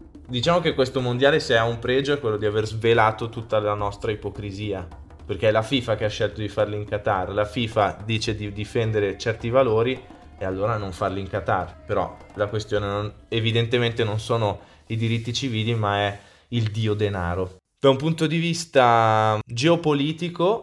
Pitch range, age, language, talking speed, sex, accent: 105-130 Hz, 20-39, Italian, 180 wpm, male, native